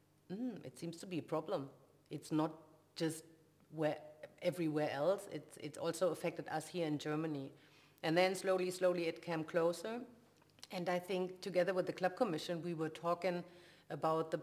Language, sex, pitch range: Greek, female, 155-170 Hz